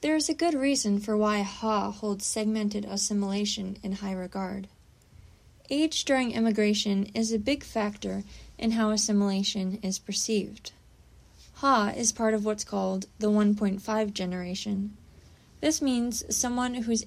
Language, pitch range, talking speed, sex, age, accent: English, 195-235 Hz, 135 wpm, female, 20-39, American